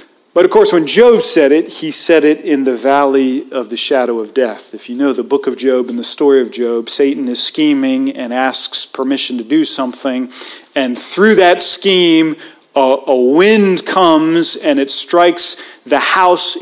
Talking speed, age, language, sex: 190 wpm, 40-59, English, male